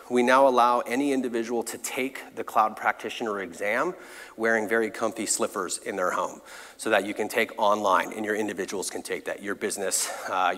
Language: English